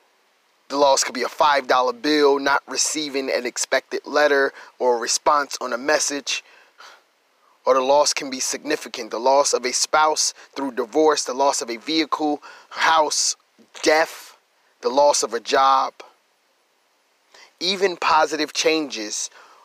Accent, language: American, English